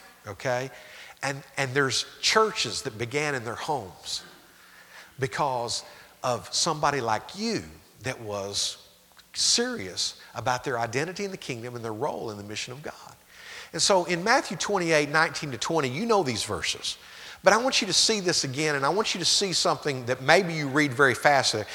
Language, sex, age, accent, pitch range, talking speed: English, male, 50-69, American, 125-180 Hz, 180 wpm